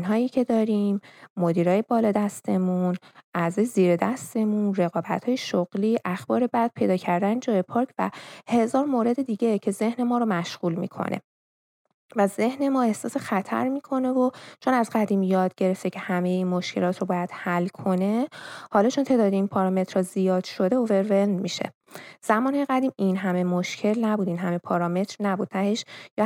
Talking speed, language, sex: 155 wpm, Persian, female